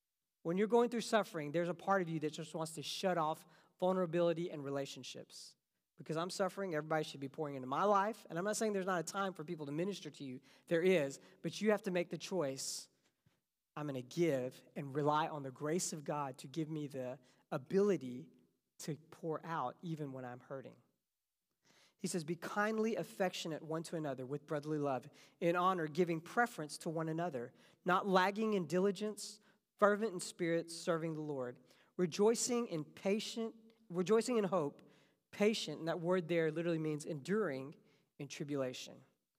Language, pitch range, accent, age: English, 150-200 Hz, American, 40-59